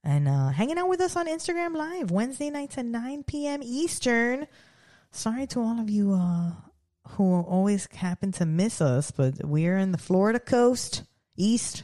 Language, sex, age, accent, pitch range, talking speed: English, female, 20-39, American, 160-235 Hz, 170 wpm